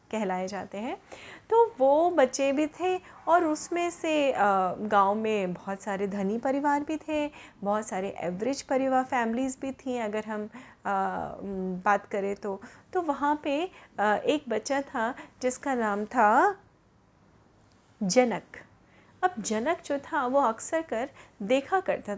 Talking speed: 135 wpm